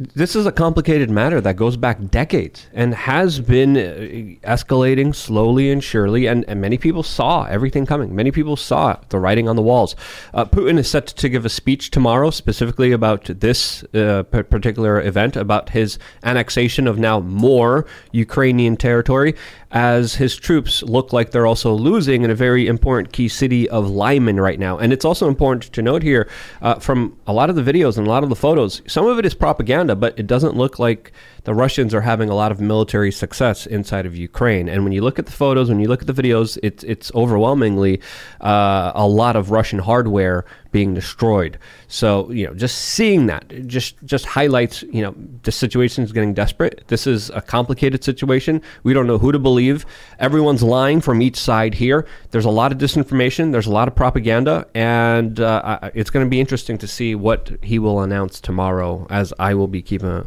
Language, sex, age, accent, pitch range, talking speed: English, male, 30-49, American, 105-130 Hz, 200 wpm